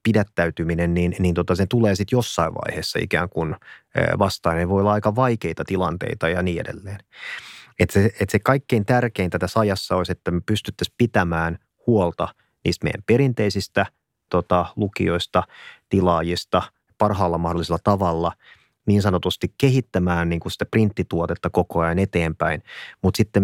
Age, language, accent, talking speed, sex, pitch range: 30-49, Finnish, native, 145 wpm, male, 90-105 Hz